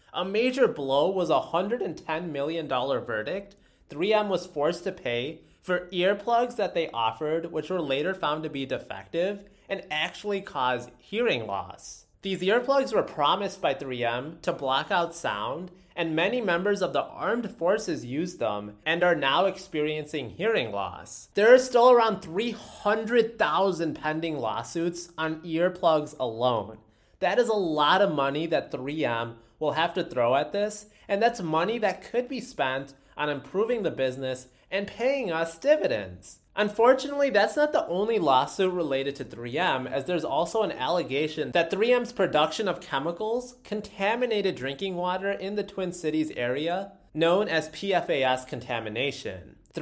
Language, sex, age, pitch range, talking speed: English, male, 30-49, 150-205 Hz, 150 wpm